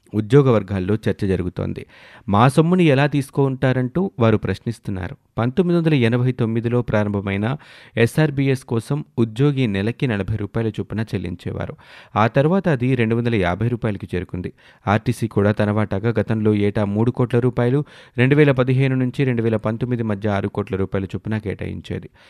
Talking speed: 125 wpm